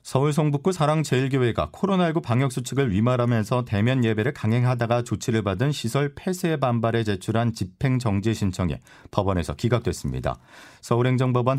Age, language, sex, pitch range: 40-59, Korean, male, 100-130 Hz